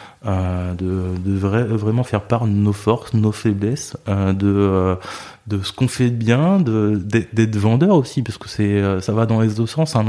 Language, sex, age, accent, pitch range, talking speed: French, male, 20-39, French, 100-120 Hz, 195 wpm